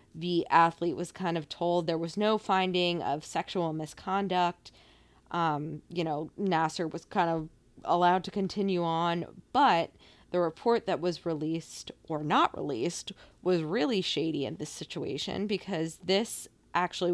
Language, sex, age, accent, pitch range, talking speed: English, female, 20-39, American, 160-185 Hz, 145 wpm